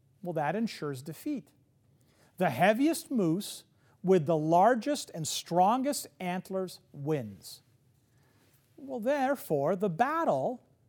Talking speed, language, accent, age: 100 wpm, English, American, 40-59